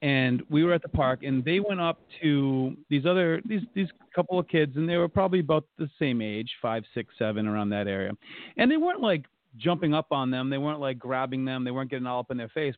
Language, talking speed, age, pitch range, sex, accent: English, 255 wpm, 30-49, 125-165 Hz, male, American